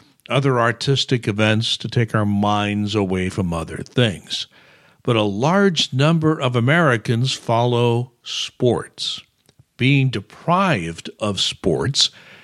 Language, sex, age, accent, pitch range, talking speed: English, male, 60-79, American, 110-140 Hz, 110 wpm